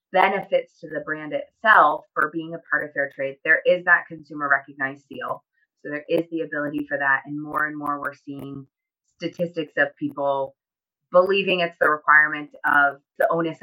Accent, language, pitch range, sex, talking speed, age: American, English, 140-180 Hz, female, 175 wpm, 30-49